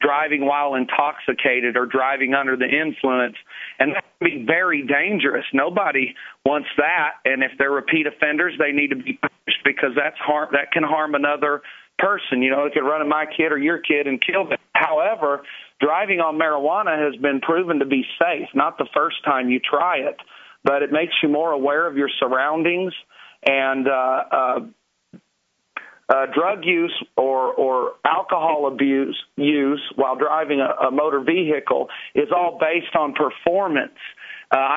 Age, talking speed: 40-59, 170 wpm